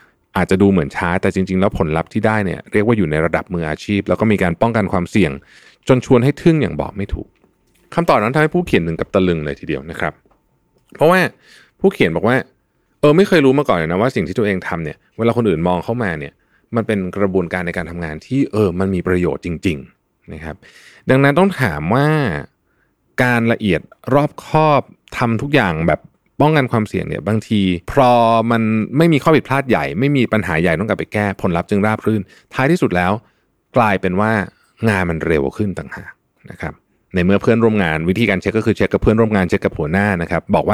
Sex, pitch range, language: male, 90-120 Hz, Thai